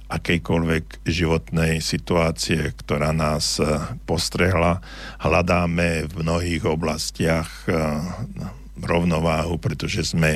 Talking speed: 75 wpm